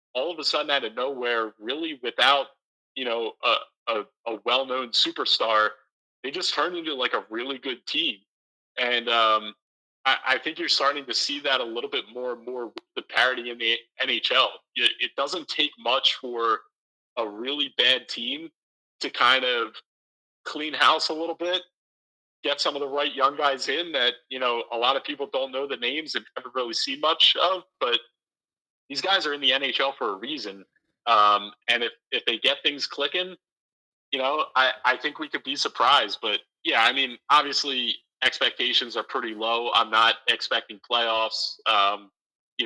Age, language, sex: 30-49, English, male